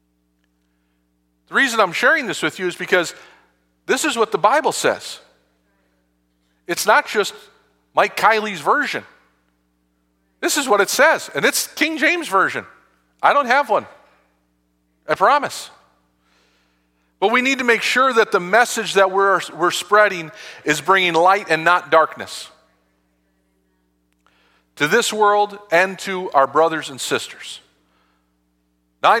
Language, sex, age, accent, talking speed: English, male, 40-59, American, 135 wpm